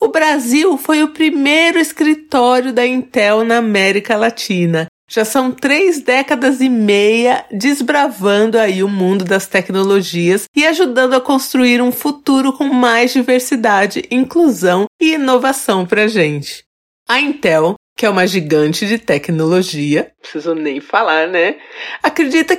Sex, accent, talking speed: female, Brazilian, 135 wpm